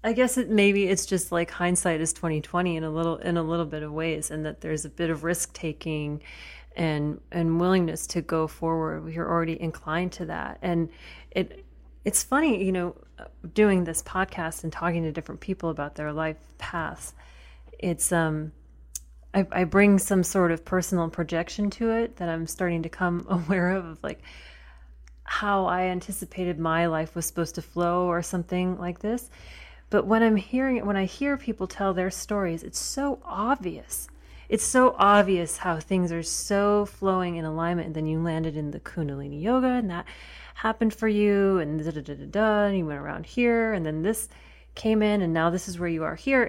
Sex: female